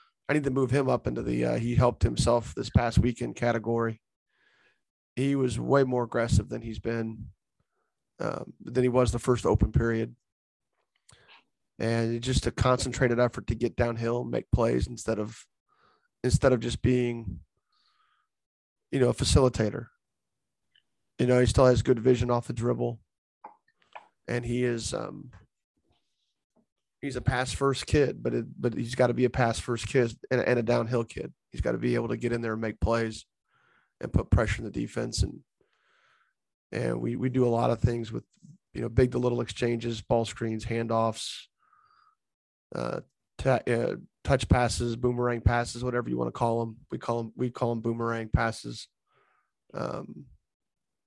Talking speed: 170 wpm